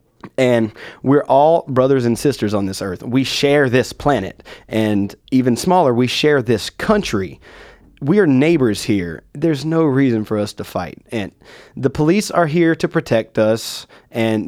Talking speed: 165 wpm